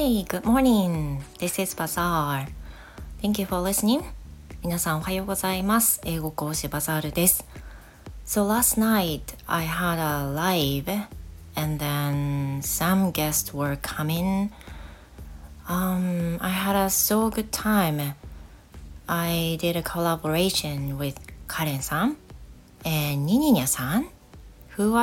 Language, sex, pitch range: Japanese, female, 145-190 Hz